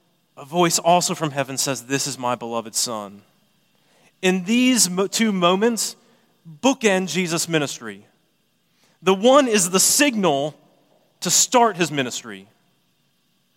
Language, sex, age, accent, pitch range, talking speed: English, male, 30-49, American, 155-215 Hz, 125 wpm